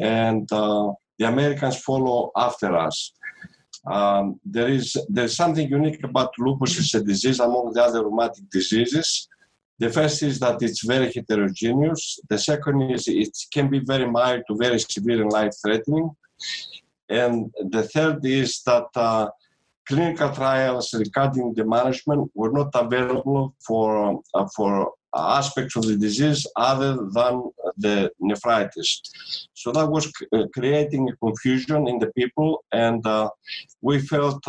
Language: English